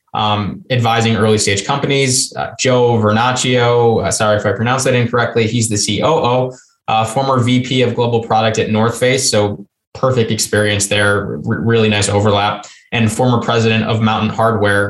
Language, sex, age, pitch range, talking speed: English, male, 20-39, 110-125 Hz, 160 wpm